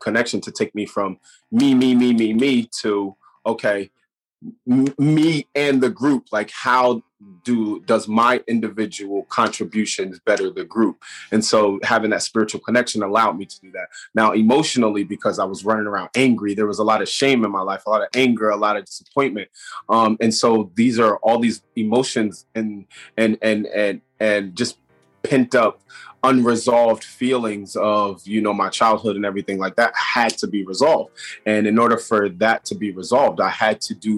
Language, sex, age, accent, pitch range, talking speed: English, male, 20-39, American, 105-120 Hz, 185 wpm